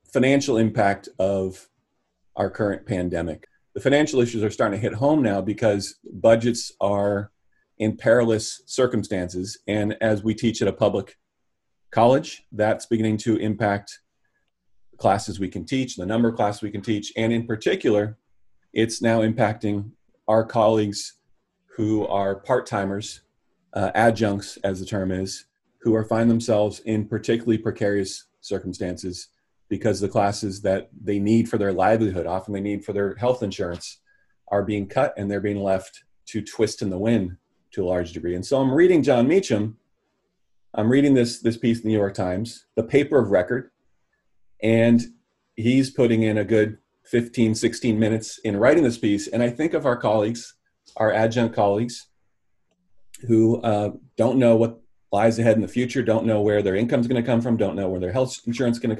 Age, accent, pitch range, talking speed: 30-49, American, 100-115 Hz, 175 wpm